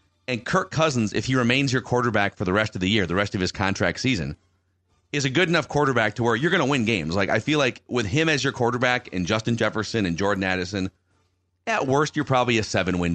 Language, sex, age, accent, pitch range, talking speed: English, male, 30-49, American, 95-130 Hz, 240 wpm